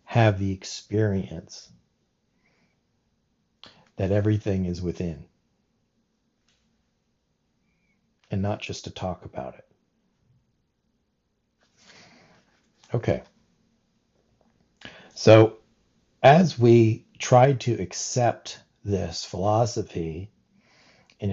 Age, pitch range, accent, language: 60-79, 95-115 Hz, American, English